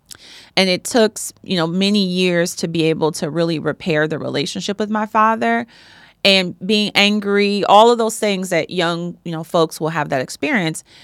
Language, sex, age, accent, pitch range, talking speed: English, female, 30-49, American, 160-200 Hz, 185 wpm